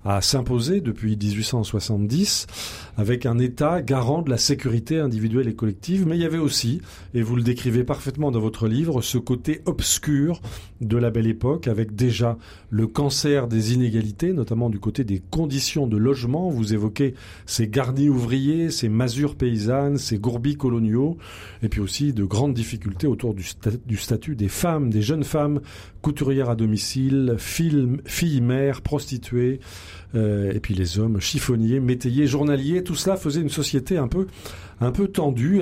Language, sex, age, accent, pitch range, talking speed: French, male, 40-59, French, 110-145 Hz, 165 wpm